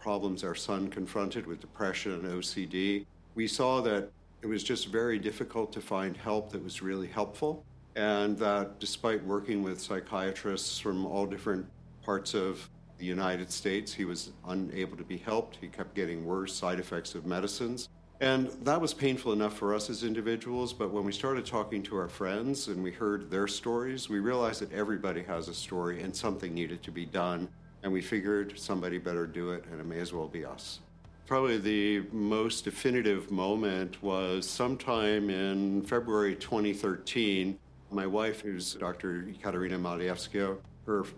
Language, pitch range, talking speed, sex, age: English, 90-105 Hz, 170 wpm, male, 50-69